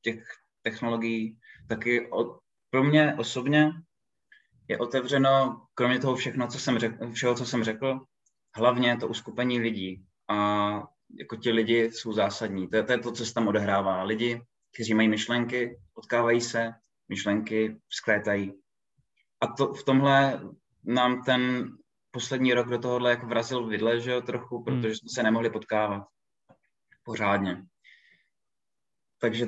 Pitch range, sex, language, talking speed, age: 110-125 Hz, male, Czech, 135 wpm, 20-39